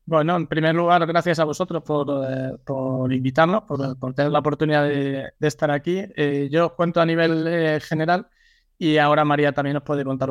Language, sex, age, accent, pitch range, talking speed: Spanish, male, 20-39, Spanish, 135-160 Hz, 200 wpm